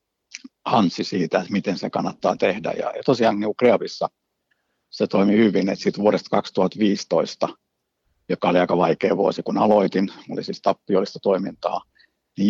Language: Finnish